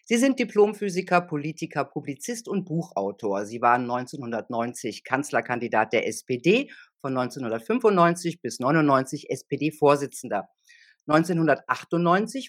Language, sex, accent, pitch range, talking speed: German, female, German, 130-185 Hz, 90 wpm